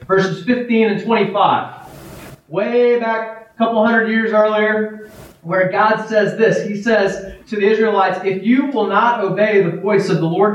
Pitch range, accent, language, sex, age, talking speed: 175-220 Hz, American, English, male, 30-49, 170 wpm